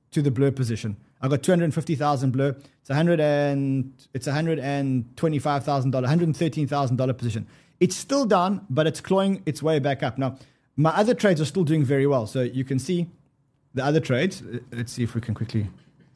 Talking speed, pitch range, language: 170 wpm, 130-160 Hz, English